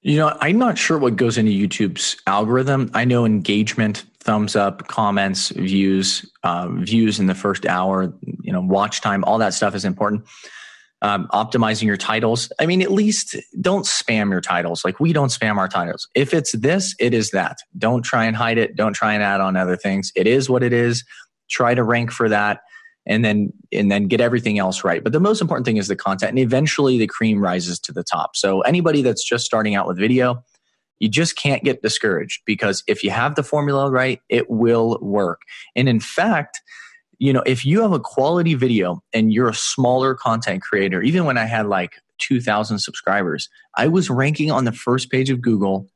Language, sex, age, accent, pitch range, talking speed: English, male, 20-39, American, 105-135 Hz, 205 wpm